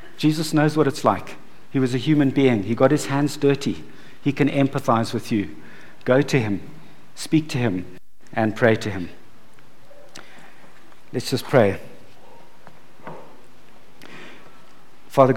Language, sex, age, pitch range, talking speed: English, male, 50-69, 110-130 Hz, 135 wpm